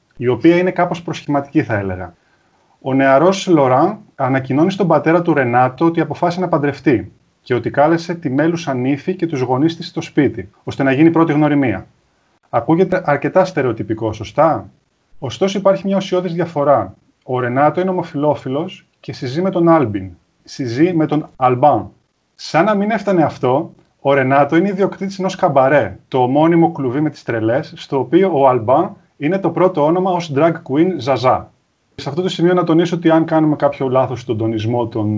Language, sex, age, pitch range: Greek, male, 30-49, 130-170 Hz